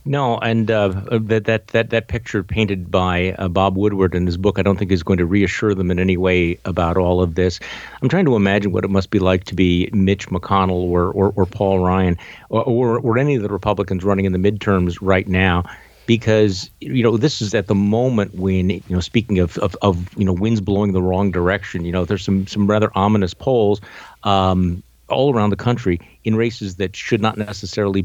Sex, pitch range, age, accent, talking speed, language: male, 95-115 Hz, 50-69, American, 220 wpm, English